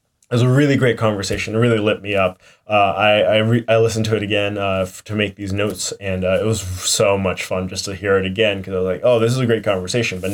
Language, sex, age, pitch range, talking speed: English, male, 10-29, 95-110 Hz, 285 wpm